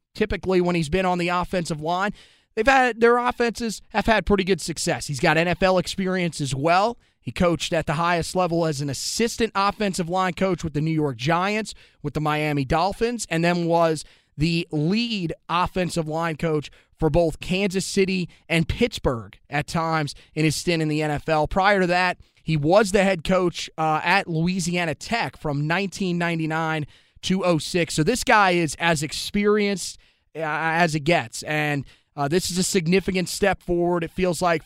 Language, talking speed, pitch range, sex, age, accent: English, 180 wpm, 155-185 Hz, male, 30-49, American